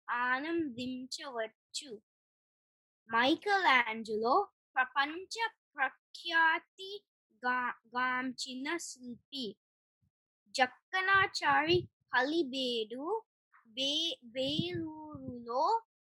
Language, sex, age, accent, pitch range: Telugu, female, 20-39, native, 250-350 Hz